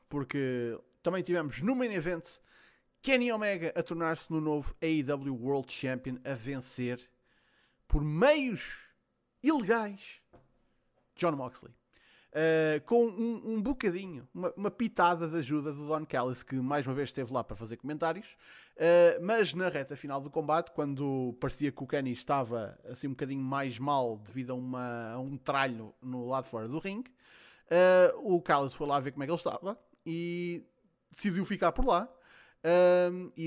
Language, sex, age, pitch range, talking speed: Portuguese, male, 20-39, 140-190 Hz, 155 wpm